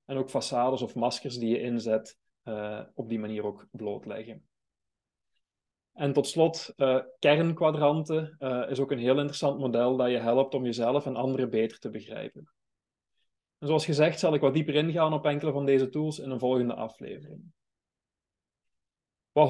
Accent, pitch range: Dutch, 125-155 Hz